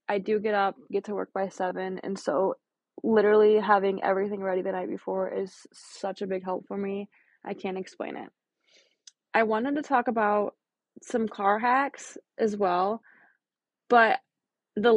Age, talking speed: 20-39, 165 wpm